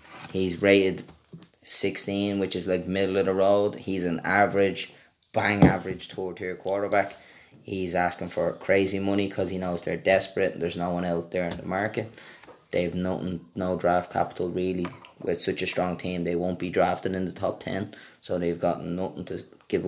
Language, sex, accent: English, male, Irish